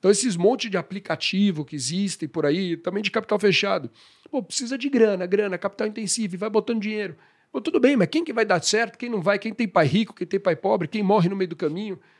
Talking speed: 245 wpm